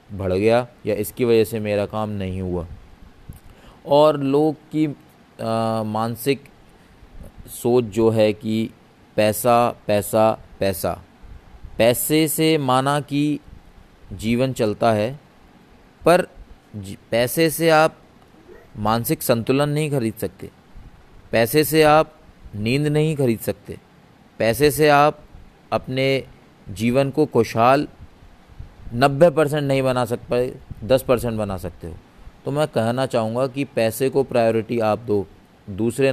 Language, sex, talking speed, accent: Hindi, male, 120 wpm, native